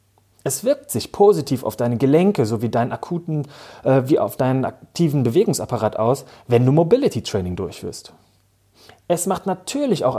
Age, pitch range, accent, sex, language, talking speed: 30-49, 115-165 Hz, German, male, German, 145 wpm